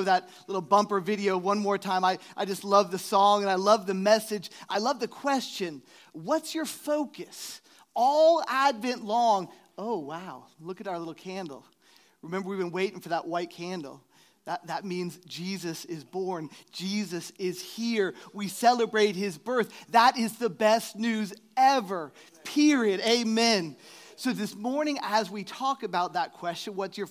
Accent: American